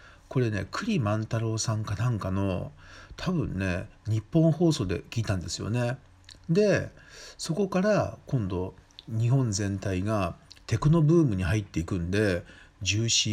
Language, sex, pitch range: Japanese, male, 90-115 Hz